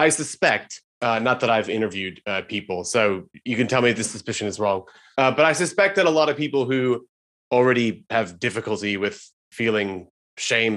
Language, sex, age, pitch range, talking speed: English, male, 20-39, 110-135 Hz, 195 wpm